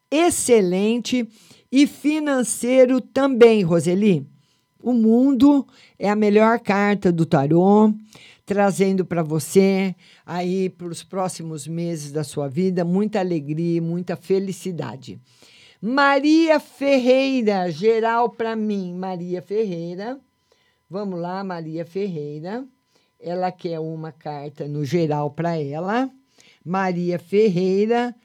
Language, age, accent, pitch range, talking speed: Portuguese, 50-69, Brazilian, 165-235 Hz, 105 wpm